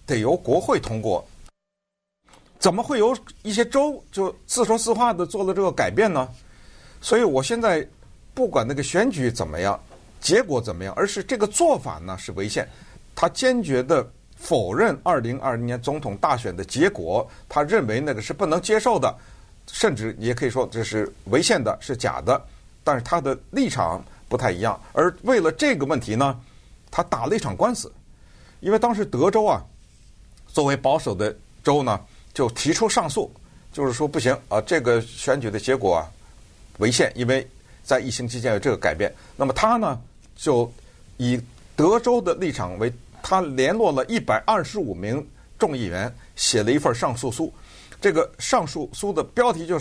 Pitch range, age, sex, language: 120-200 Hz, 50-69, male, Chinese